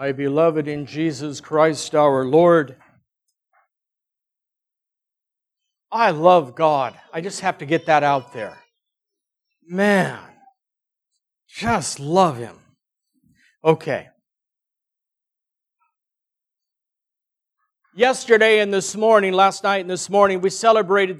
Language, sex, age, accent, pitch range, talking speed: English, male, 60-79, American, 155-215 Hz, 95 wpm